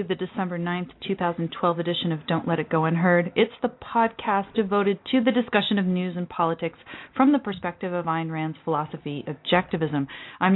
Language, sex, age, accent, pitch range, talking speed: English, female, 30-49, American, 175-210 Hz, 175 wpm